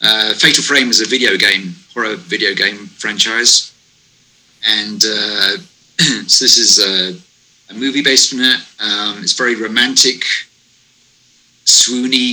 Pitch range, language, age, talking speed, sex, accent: 105-125 Hz, English, 30-49, 130 wpm, male, British